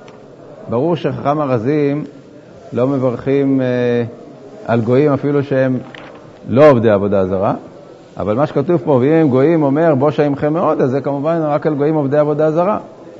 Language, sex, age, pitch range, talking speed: Hebrew, male, 50-69, 120-155 Hz, 150 wpm